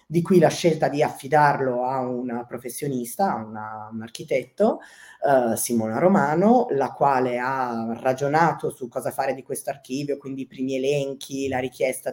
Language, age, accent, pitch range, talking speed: Italian, 20-39, native, 125-160 Hz, 160 wpm